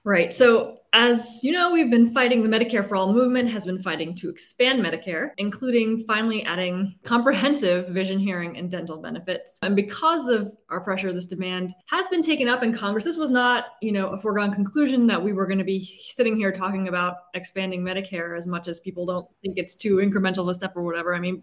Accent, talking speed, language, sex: American, 215 wpm, English, female